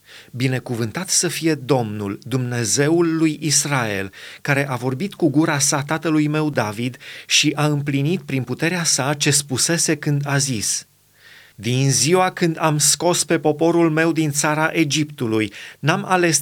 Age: 30-49